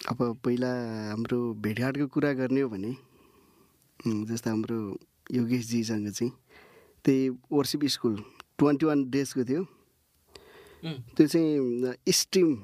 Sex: male